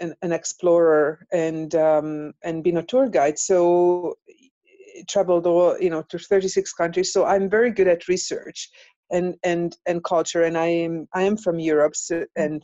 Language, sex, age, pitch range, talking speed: English, female, 50-69, 160-185 Hz, 170 wpm